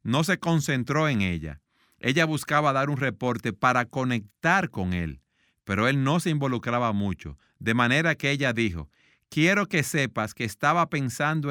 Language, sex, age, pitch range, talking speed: Spanish, male, 50-69, 110-155 Hz, 160 wpm